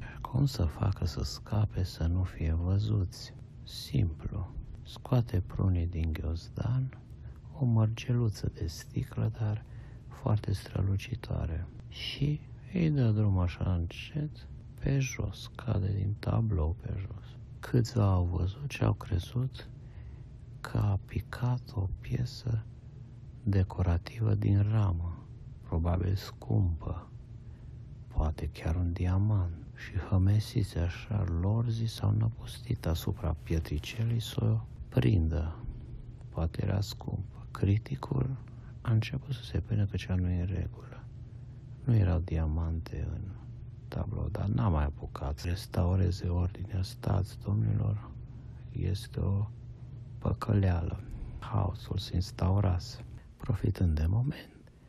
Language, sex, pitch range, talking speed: Romanian, male, 95-120 Hz, 115 wpm